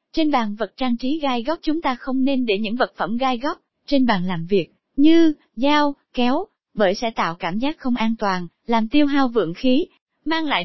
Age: 20-39